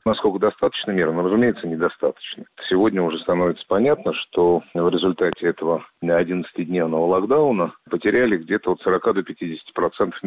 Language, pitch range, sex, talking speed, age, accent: Russian, 105-135 Hz, male, 130 wpm, 30-49, native